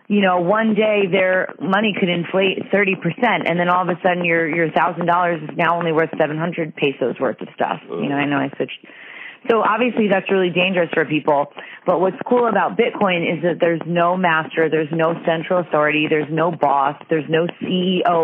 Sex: female